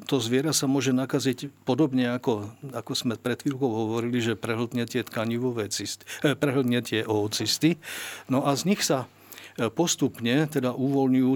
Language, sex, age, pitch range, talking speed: Slovak, male, 50-69, 115-140 Hz, 150 wpm